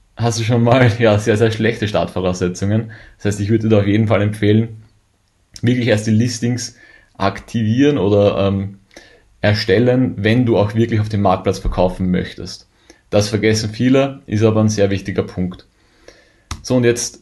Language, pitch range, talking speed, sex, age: German, 100-115 Hz, 165 wpm, male, 30-49